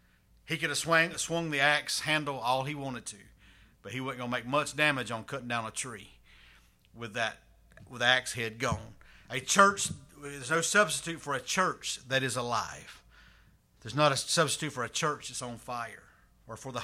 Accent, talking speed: American, 200 wpm